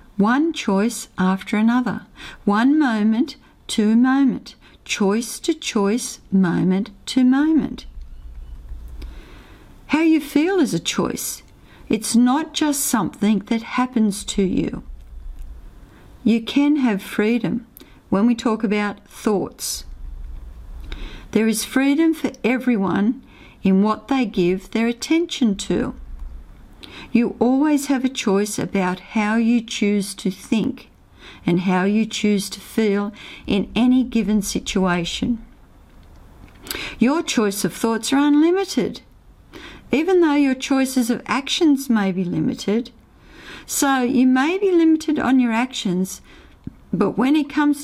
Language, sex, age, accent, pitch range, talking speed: English, female, 50-69, Australian, 190-260 Hz, 120 wpm